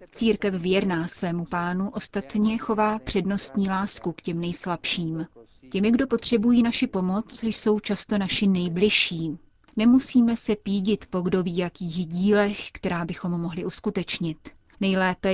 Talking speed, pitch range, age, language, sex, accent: 130 wpm, 180-215 Hz, 30-49, Czech, female, native